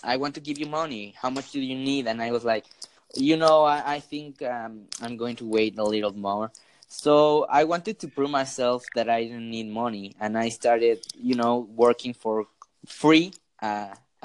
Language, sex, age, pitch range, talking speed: English, male, 20-39, 110-135 Hz, 200 wpm